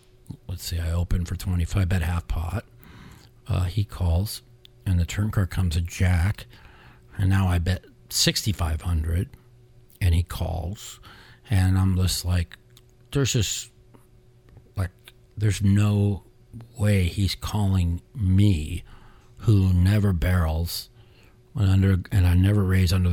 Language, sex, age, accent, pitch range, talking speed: English, male, 50-69, American, 90-115 Hz, 130 wpm